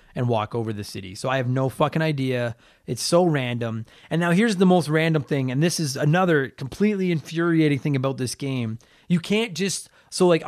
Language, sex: English, male